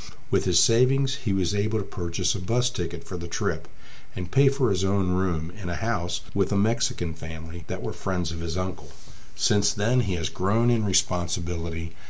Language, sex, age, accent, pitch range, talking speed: English, male, 50-69, American, 85-105 Hz, 200 wpm